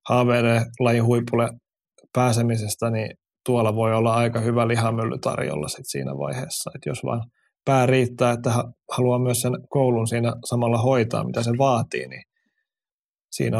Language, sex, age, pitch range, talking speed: Finnish, male, 20-39, 115-130 Hz, 135 wpm